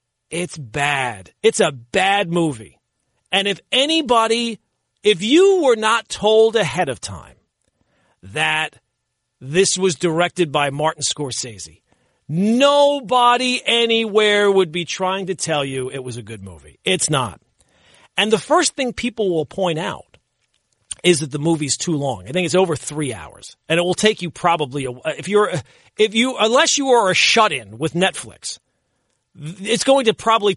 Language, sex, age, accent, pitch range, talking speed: English, male, 40-59, American, 150-240 Hz, 160 wpm